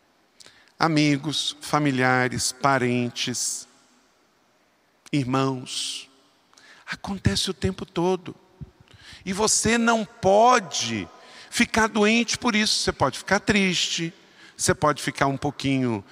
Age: 50-69